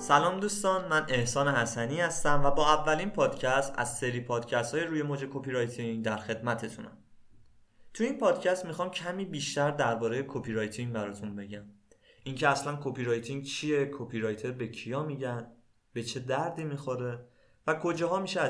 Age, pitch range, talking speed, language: 20-39, 115-155 Hz, 150 wpm, Persian